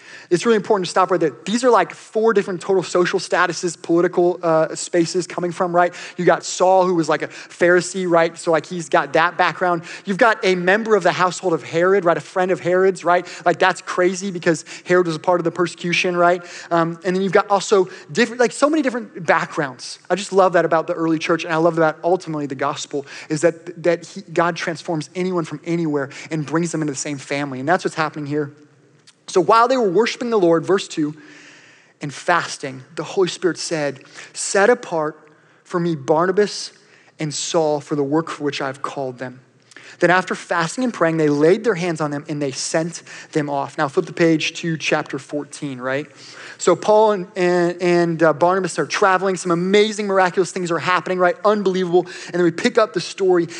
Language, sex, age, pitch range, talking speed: English, male, 20-39, 160-185 Hz, 210 wpm